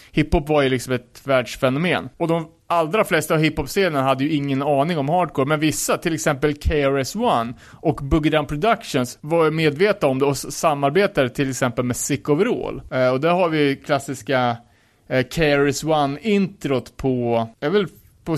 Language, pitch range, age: Swedish, 135-170 Hz, 30-49